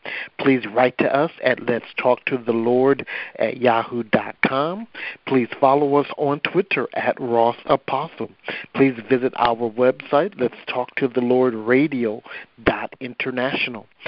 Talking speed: 130 wpm